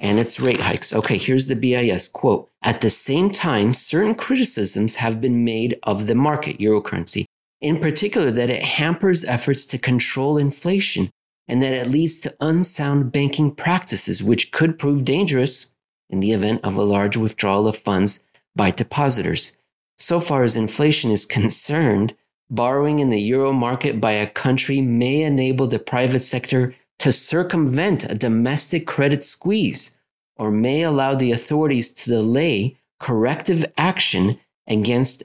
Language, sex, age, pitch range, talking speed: English, male, 30-49, 115-145 Hz, 155 wpm